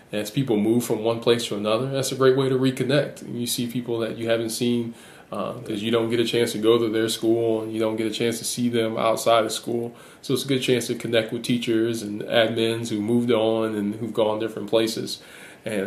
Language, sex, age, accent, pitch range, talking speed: English, male, 20-39, American, 110-120 Hz, 250 wpm